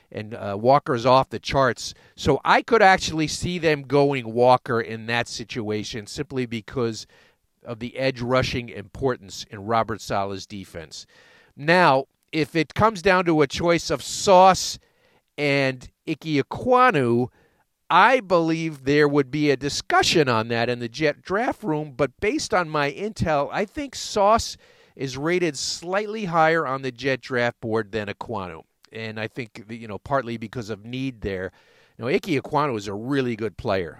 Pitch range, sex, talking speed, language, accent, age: 115-165 Hz, male, 165 wpm, English, American, 50-69